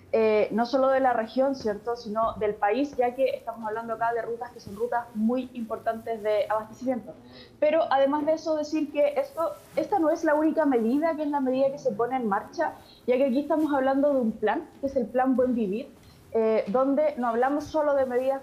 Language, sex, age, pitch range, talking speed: Spanish, female, 20-39, 230-275 Hz, 220 wpm